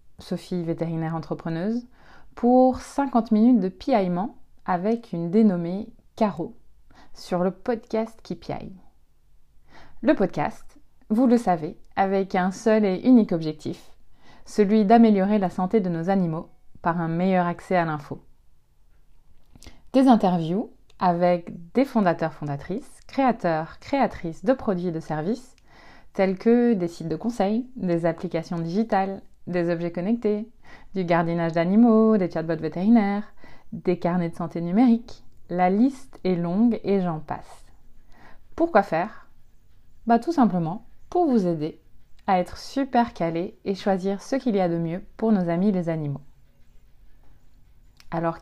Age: 30-49